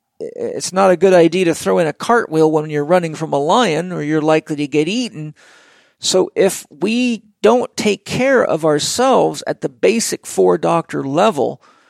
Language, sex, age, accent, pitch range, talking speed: English, male, 50-69, American, 140-200 Hz, 175 wpm